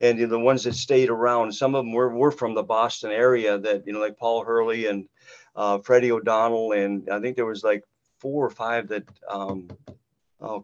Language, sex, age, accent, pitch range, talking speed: English, male, 50-69, American, 110-130 Hz, 210 wpm